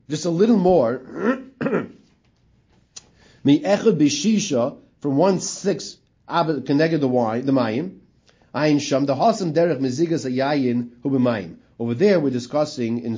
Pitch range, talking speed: 130-170 Hz, 130 wpm